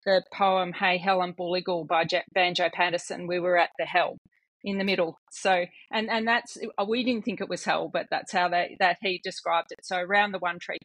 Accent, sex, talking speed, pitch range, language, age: Australian, female, 230 wpm, 175-200 Hz, English, 30-49